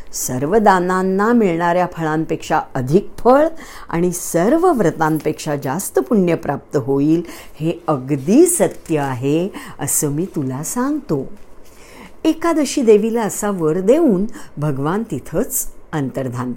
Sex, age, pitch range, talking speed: female, 50-69, 150-215 Hz, 105 wpm